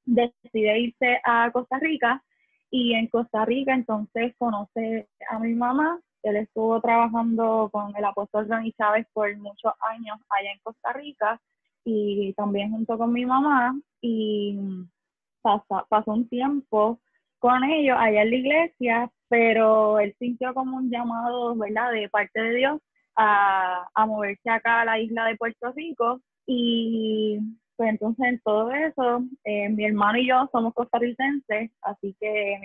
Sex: female